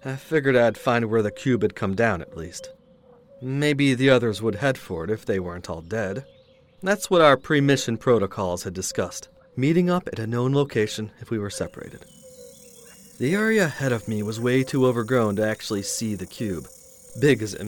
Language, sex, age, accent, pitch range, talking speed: English, male, 40-59, American, 110-165 Hz, 195 wpm